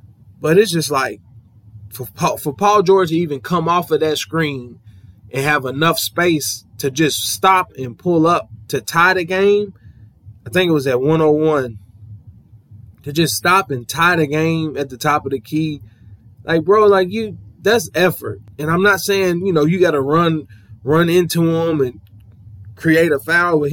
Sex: male